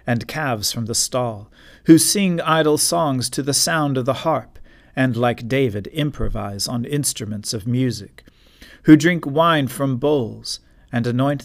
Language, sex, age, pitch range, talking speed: English, male, 40-59, 115-140 Hz, 155 wpm